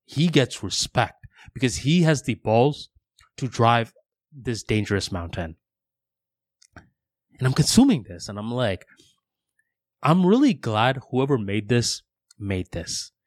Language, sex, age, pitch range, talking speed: English, male, 20-39, 110-150 Hz, 125 wpm